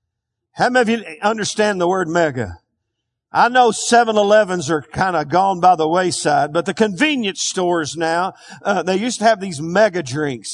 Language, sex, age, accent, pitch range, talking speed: English, male, 50-69, American, 160-230 Hz, 180 wpm